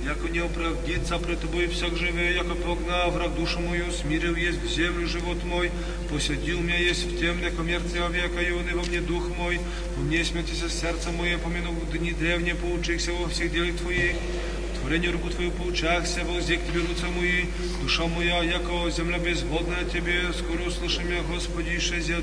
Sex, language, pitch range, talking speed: male, Polish, 170-175 Hz, 180 wpm